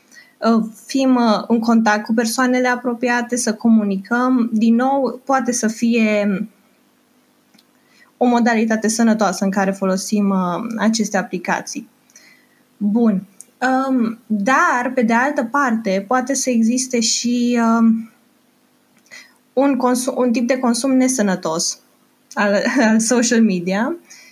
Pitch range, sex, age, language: 225-270 Hz, female, 20-39, Romanian